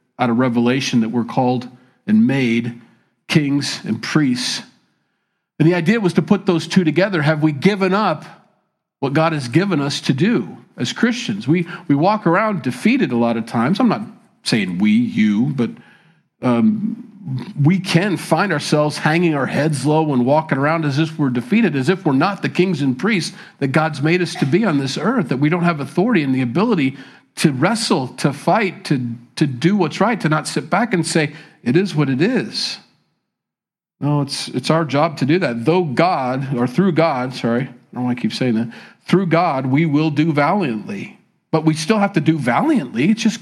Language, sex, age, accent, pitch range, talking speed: English, male, 50-69, American, 130-190 Hz, 200 wpm